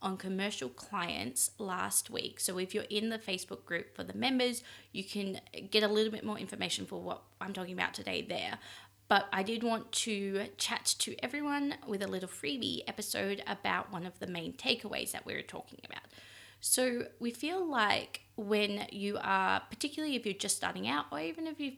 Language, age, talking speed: English, 20-39, 195 wpm